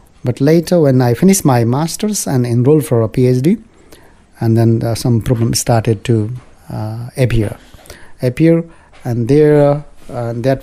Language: English